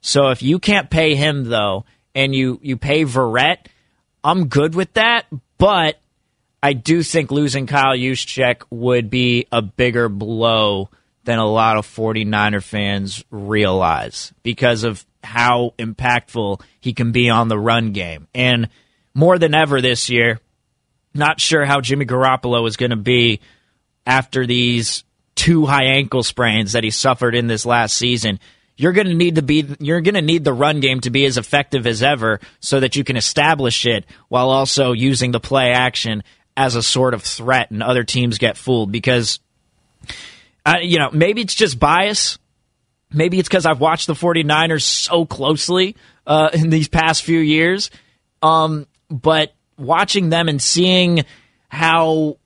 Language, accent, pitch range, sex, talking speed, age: English, American, 115-155 Hz, male, 165 wpm, 30-49